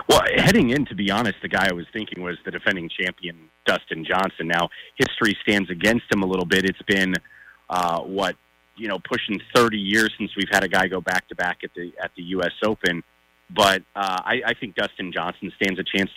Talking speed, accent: 210 wpm, American